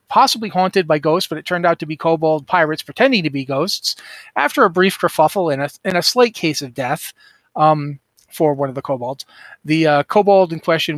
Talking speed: 215 wpm